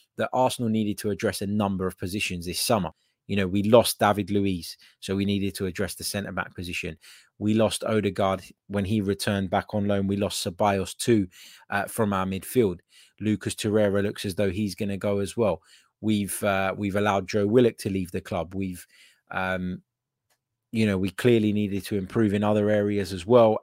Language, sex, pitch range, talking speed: English, male, 100-115 Hz, 195 wpm